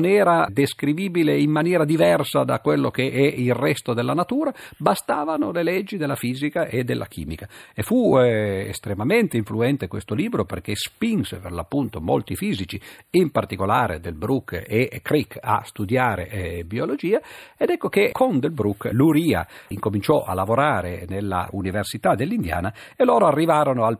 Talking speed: 155 wpm